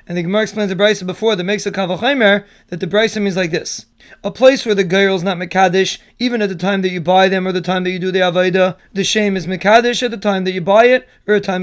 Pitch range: 190-220 Hz